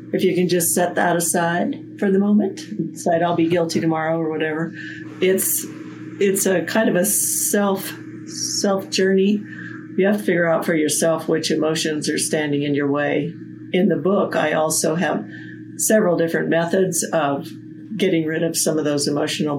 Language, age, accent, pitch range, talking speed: English, 40-59, American, 160-180 Hz, 175 wpm